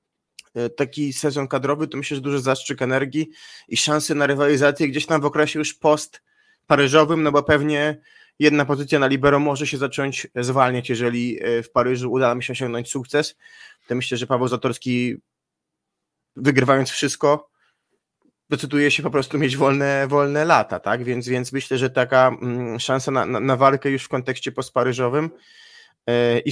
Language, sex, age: Polish, male, 20-39